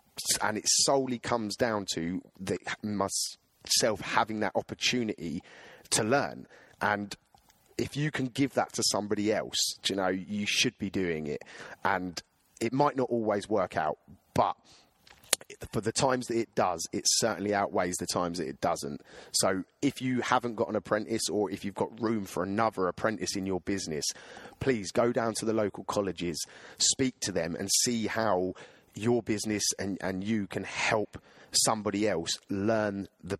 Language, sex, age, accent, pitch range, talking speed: English, male, 30-49, British, 95-115 Hz, 170 wpm